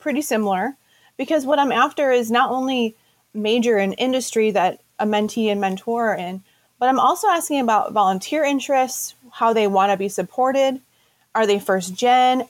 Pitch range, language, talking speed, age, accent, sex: 205-250 Hz, English, 175 wpm, 30-49, American, female